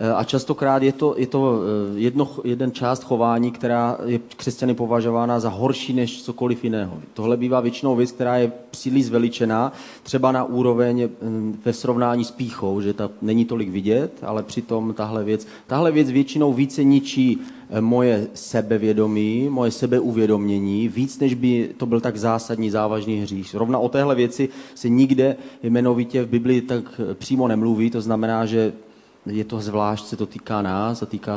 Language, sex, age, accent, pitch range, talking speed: Czech, male, 30-49, native, 110-125 Hz, 165 wpm